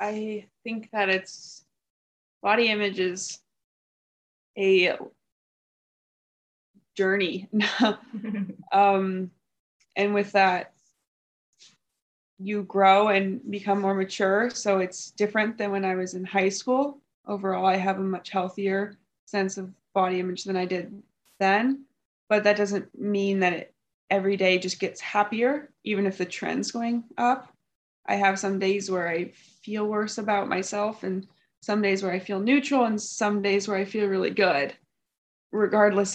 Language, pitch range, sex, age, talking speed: English, 190-210 Hz, female, 20-39, 140 wpm